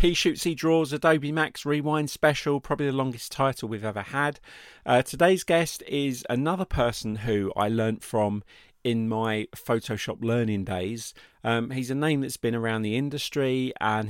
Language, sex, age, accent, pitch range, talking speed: English, male, 40-59, British, 105-135 Hz, 170 wpm